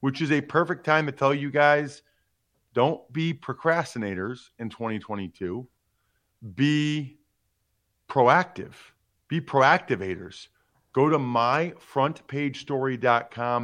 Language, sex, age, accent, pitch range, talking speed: English, male, 40-59, American, 110-160 Hz, 90 wpm